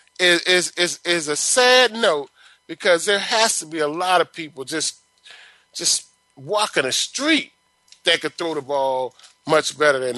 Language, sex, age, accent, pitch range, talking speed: English, male, 30-49, American, 155-225 Hz, 165 wpm